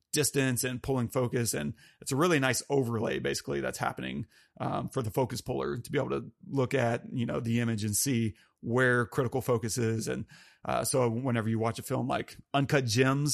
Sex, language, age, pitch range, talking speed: male, English, 30-49, 115-135 Hz, 200 wpm